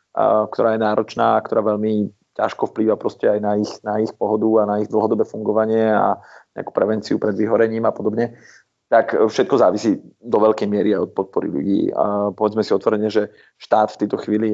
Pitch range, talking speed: 105-110 Hz, 190 wpm